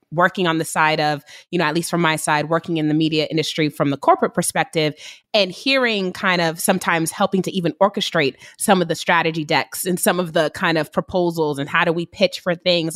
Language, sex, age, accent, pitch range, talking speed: English, female, 20-39, American, 155-185 Hz, 225 wpm